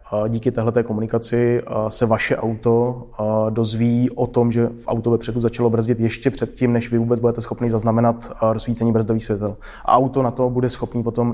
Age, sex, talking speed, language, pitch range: 20-39, male, 175 wpm, Czech, 115-120 Hz